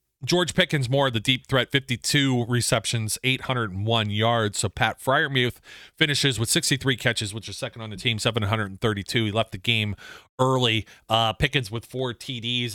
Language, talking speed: English, 165 wpm